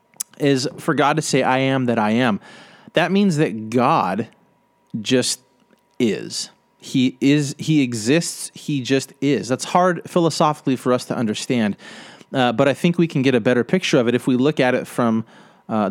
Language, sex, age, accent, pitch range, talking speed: English, male, 30-49, American, 125-180 Hz, 185 wpm